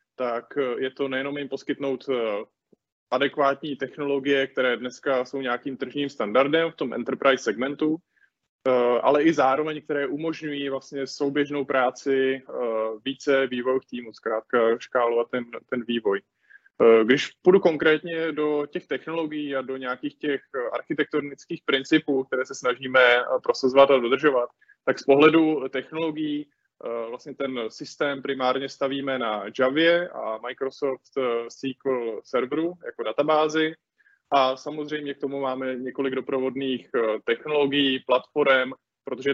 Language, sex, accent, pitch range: Czech, male, native, 125-145 Hz